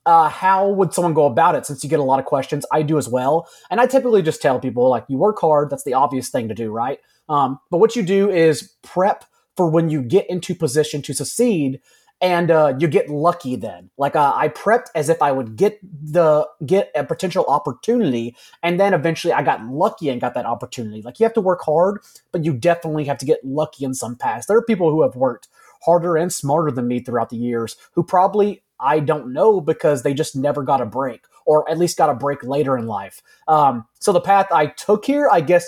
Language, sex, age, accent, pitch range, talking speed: English, male, 30-49, American, 140-180 Hz, 235 wpm